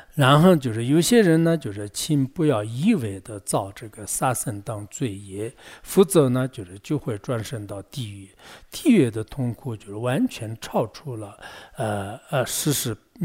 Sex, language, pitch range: male, English, 110-145 Hz